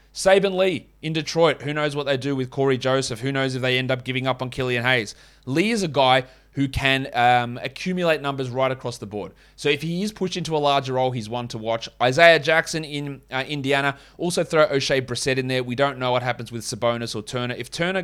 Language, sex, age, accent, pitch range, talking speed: English, male, 20-39, Australian, 120-155 Hz, 235 wpm